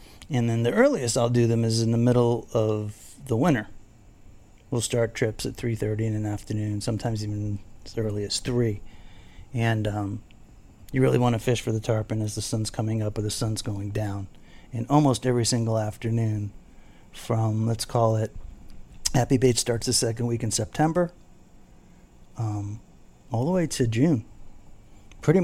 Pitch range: 105-130 Hz